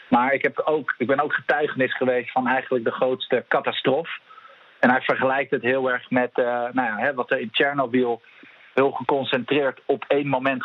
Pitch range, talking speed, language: 120-130 Hz, 190 wpm, English